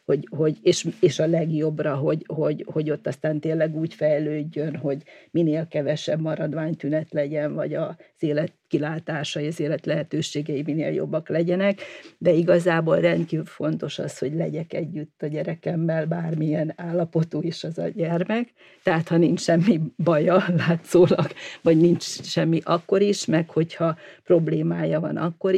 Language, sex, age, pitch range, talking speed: Hungarian, female, 40-59, 155-175 Hz, 140 wpm